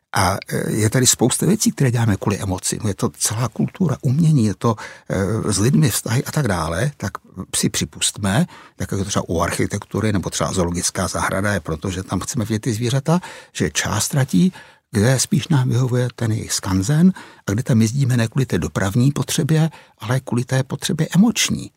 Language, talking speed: Czech, 185 wpm